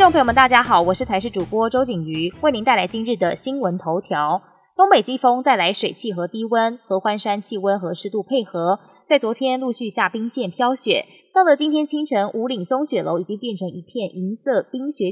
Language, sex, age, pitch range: Chinese, female, 20-39, 190-260 Hz